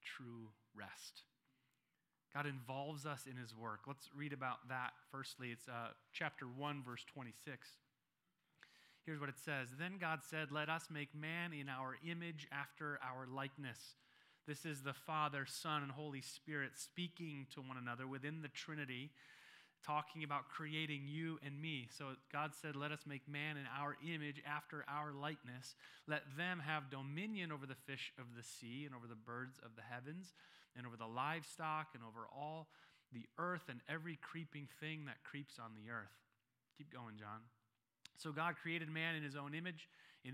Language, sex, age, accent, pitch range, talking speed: English, male, 30-49, American, 125-155 Hz, 175 wpm